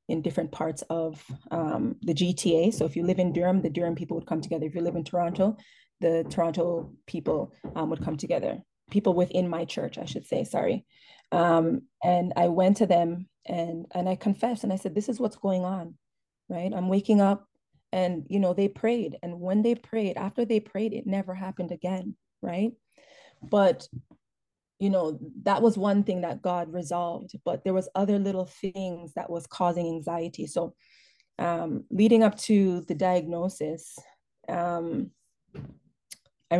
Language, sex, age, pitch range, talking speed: English, female, 20-39, 170-190 Hz, 175 wpm